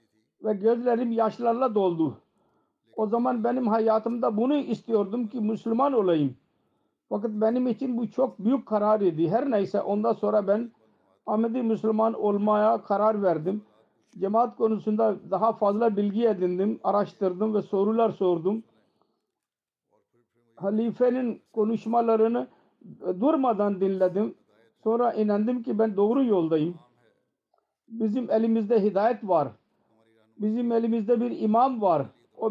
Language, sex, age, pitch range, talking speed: Turkish, male, 50-69, 200-230 Hz, 115 wpm